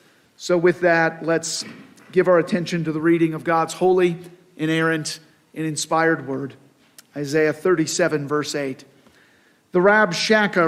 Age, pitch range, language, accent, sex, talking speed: 50-69, 170-220 Hz, English, American, male, 130 wpm